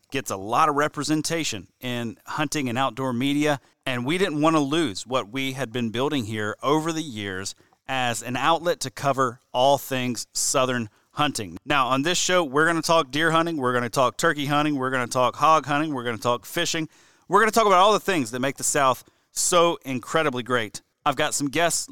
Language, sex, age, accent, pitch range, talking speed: English, male, 30-49, American, 125-165 Hz, 220 wpm